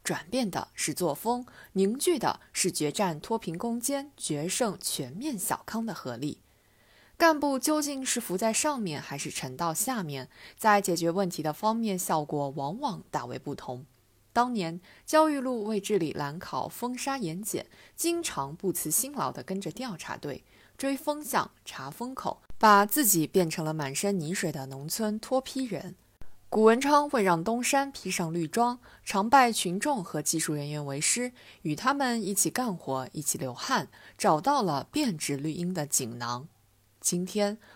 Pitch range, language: 155-245 Hz, Chinese